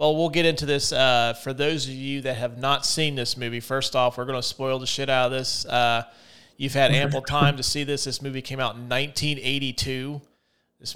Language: English